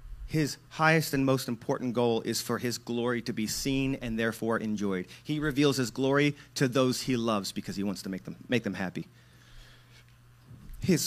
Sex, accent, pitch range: male, American, 120-175 Hz